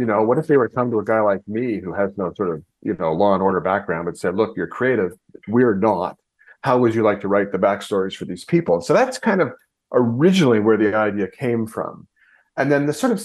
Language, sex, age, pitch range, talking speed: English, male, 40-59, 95-125 Hz, 260 wpm